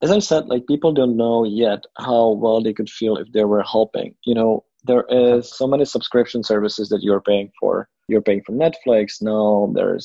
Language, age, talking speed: English, 20-39, 210 wpm